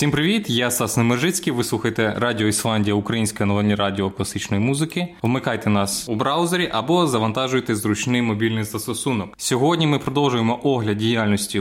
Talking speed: 145 wpm